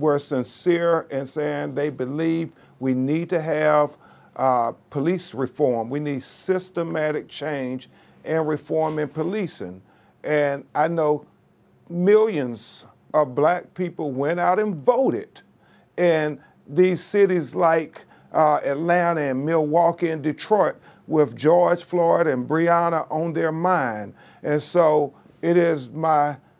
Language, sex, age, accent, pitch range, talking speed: English, male, 50-69, American, 145-170 Hz, 125 wpm